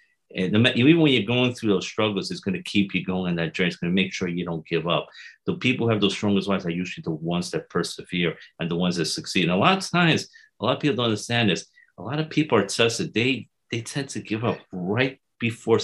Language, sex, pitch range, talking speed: English, male, 95-125 Hz, 265 wpm